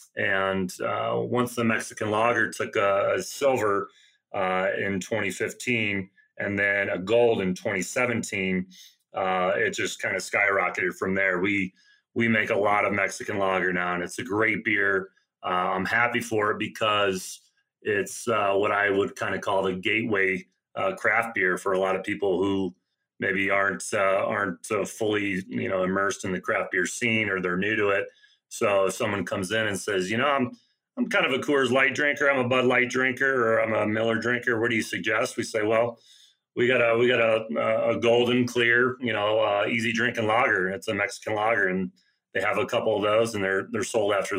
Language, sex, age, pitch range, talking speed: English, male, 30-49, 95-120 Hz, 205 wpm